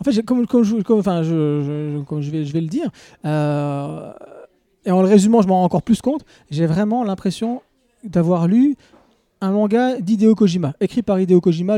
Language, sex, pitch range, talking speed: French, male, 170-225 Hz, 160 wpm